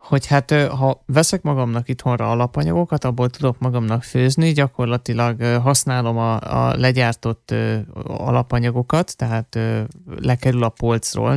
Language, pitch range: Hungarian, 120-140 Hz